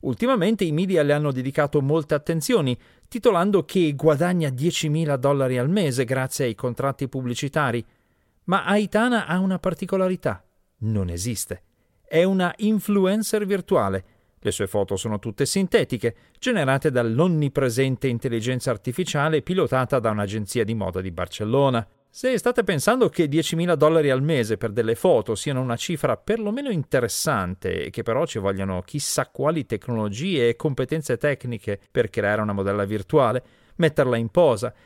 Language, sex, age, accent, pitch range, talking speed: Italian, male, 40-59, native, 115-175 Hz, 140 wpm